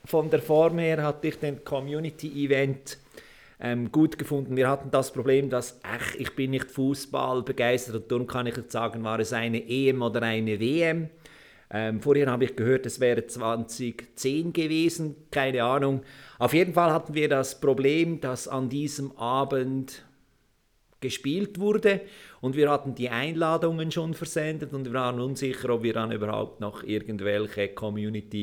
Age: 50-69